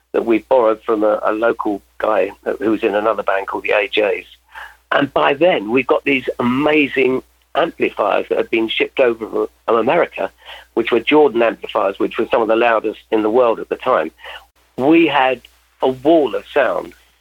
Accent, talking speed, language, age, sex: British, 185 wpm, English, 50-69, male